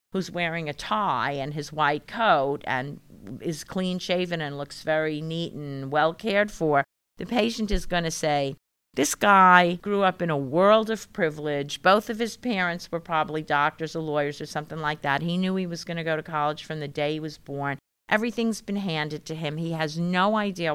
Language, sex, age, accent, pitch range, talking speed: English, female, 50-69, American, 150-185 Hz, 210 wpm